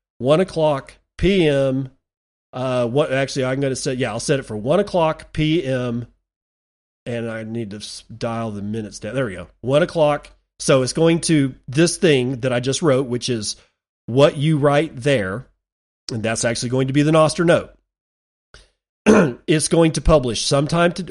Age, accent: 40-59, American